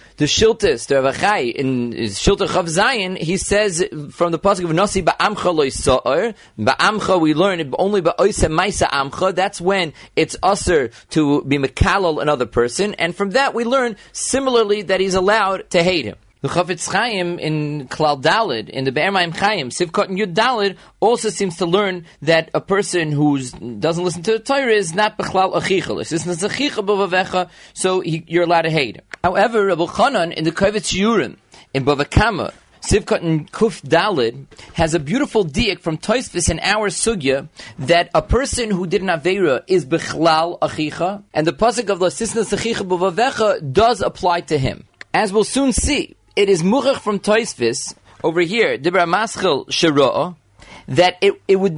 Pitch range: 160-205 Hz